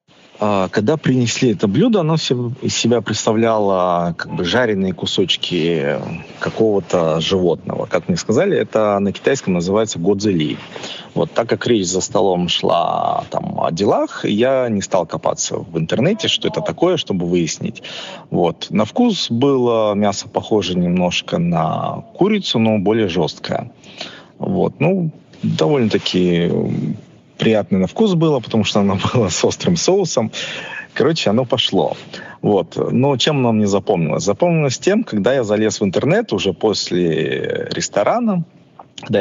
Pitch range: 105-150 Hz